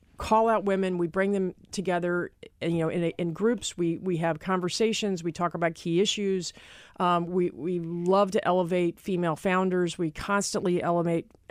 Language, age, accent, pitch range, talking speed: English, 40-59, American, 165-195 Hz, 165 wpm